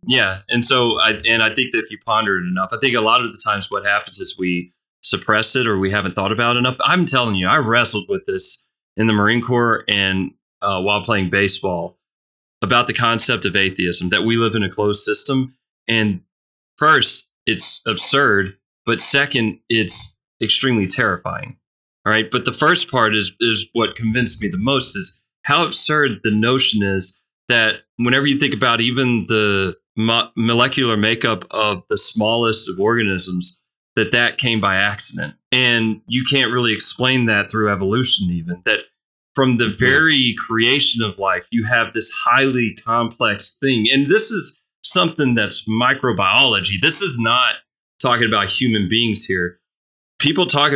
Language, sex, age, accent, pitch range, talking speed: English, male, 30-49, American, 100-125 Hz, 175 wpm